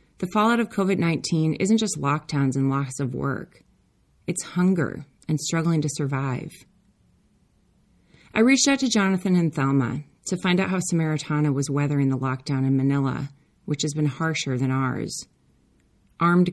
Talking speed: 155 wpm